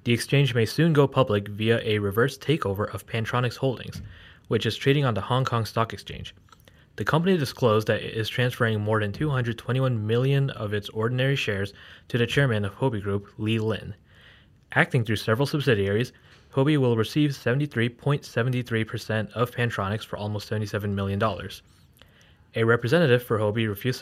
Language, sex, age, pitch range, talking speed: English, male, 20-39, 100-125 Hz, 160 wpm